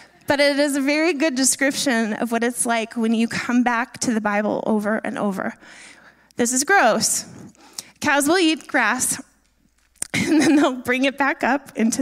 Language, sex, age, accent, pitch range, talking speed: English, female, 20-39, American, 220-270 Hz, 180 wpm